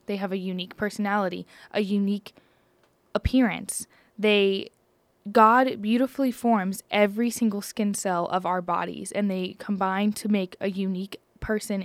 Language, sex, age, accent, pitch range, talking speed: English, female, 10-29, American, 200-245 Hz, 135 wpm